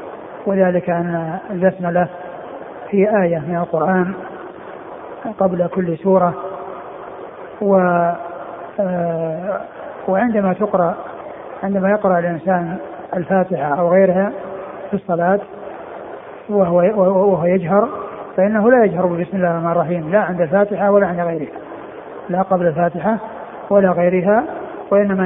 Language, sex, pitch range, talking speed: Arabic, male, 175-195 Hz, 100 wpm